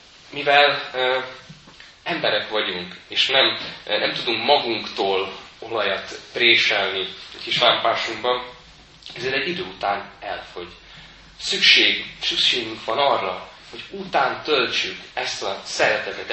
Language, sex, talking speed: Hungarian, male, 105 wpm